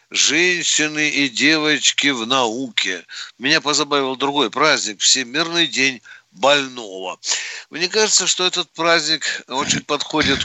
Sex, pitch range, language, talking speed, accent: male, 130-160 Hz, Russian, 110 wpm, native